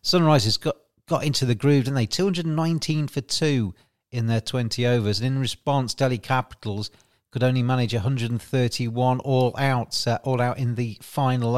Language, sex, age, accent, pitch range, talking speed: English, male, 40-59, British, 115-150 Hz, 165 wpm